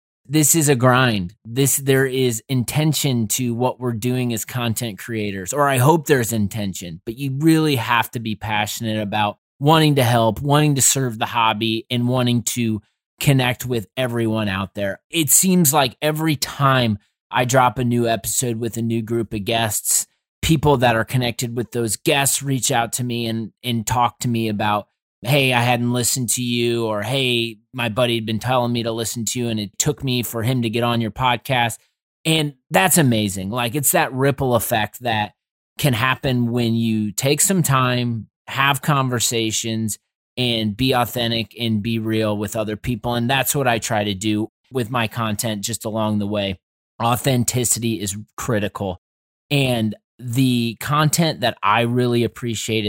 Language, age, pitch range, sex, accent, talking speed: English, 30-49, 110-130 Hz, male, American, 180 wpm